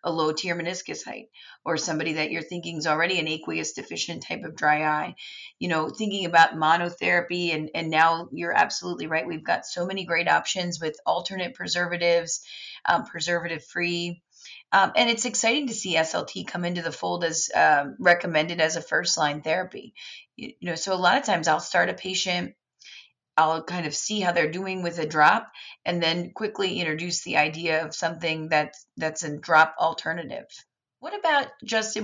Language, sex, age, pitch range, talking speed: English, female, 30-49, 160-185 Hz, 185 wpm